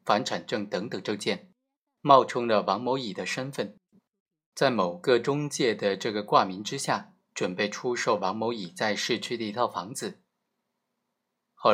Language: Chinese